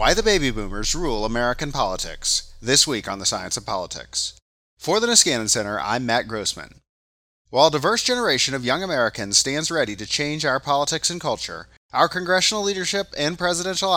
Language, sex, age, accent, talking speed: English, male, 30-49, American, 175 wpm